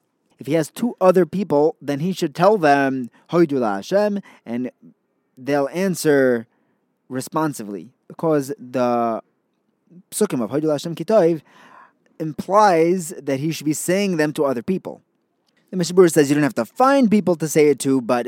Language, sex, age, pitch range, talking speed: English, male, 20-39, 125-185 Hz, 140 wpm